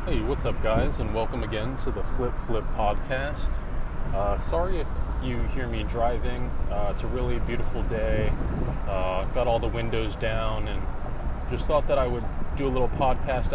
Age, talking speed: 20-39, 180 wpm